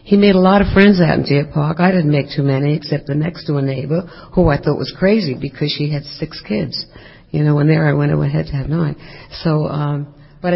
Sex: female